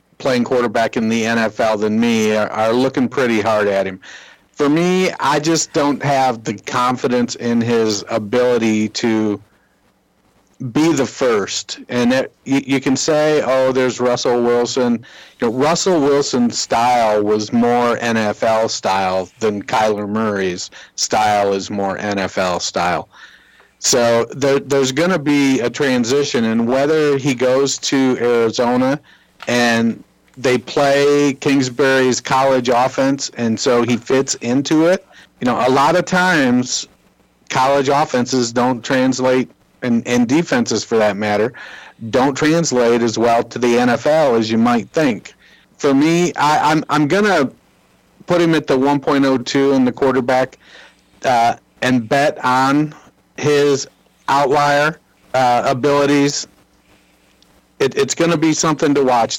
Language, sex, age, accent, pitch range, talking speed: English, male, 50-69, American, 115-145 Hz, 140 wpm